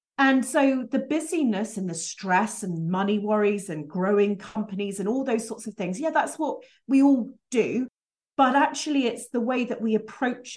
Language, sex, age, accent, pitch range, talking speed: English, female, 40-59, British, 205-250 Hz, 185 wpm